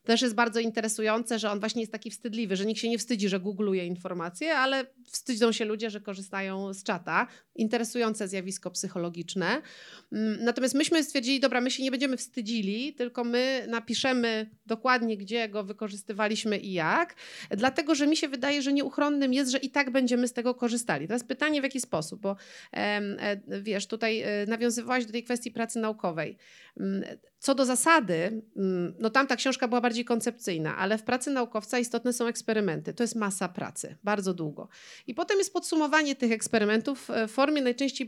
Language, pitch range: Polish, 205-250 Hz